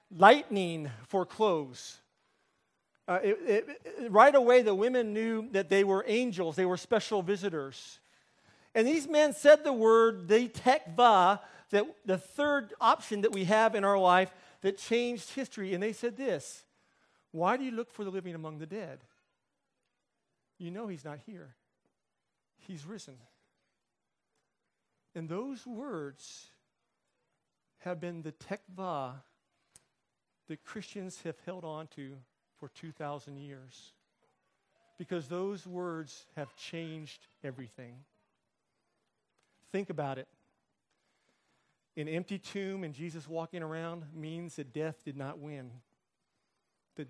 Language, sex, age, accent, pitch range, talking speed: English, male, 40-59, American, 155-205 Hz, 130 wpm